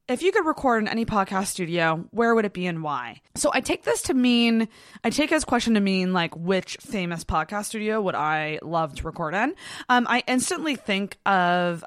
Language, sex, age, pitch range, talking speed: English, female, 20-39, 170-225 Hz, 210 wpm